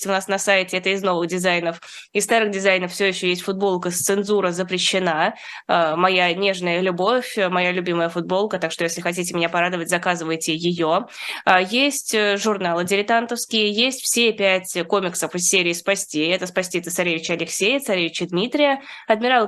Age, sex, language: 20-39, female, Russian